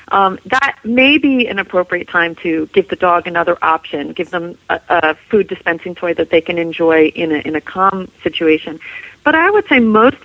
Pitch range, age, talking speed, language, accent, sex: 170-205 Hz, 40-59, 205 wpm, English, American, female